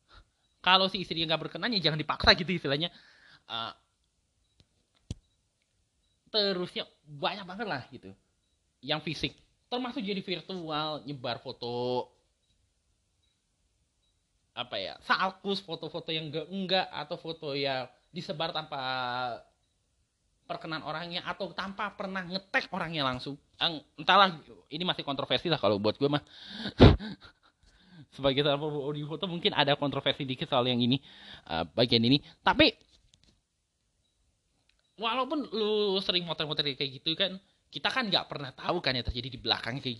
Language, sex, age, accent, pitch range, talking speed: Indonesian, male, 20-39, native, 120-175 Hz, 125 wpm